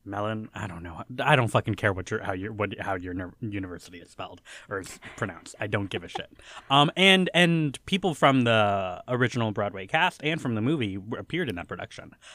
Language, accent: English, American